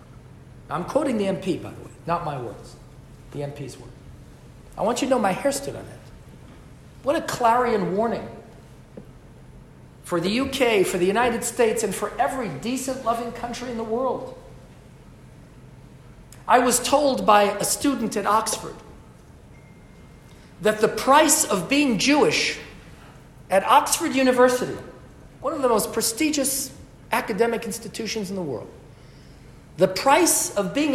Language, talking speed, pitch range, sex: English, 145 wpm, 190-270 Hz, male